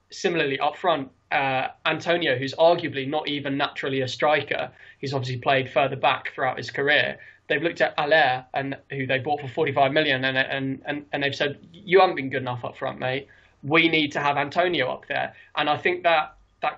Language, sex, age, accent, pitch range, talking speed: English, male, 20-39, British, 130-155 Hz, 205 wpm